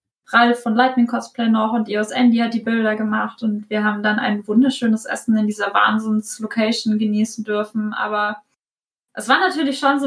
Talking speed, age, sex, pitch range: 180 wpm, 20-39, female, 225-260 Hz